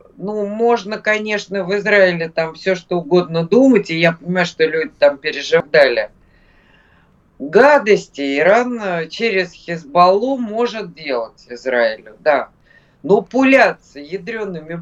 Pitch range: 155-225 Hz